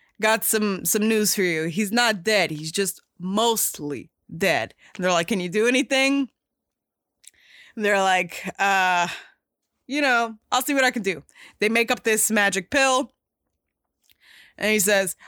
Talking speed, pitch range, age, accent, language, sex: 160 wpm, 200-255 Hz, 20-39, American, English, female